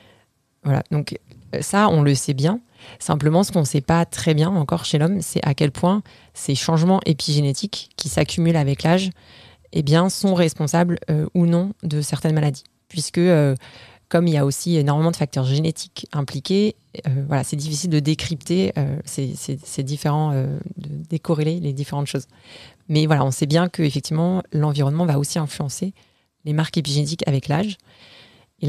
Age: 30-49